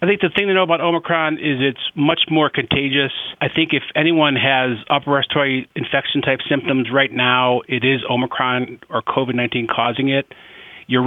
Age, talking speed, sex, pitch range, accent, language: 40-59, 180 wpm, male, 125-145 Hz, American, English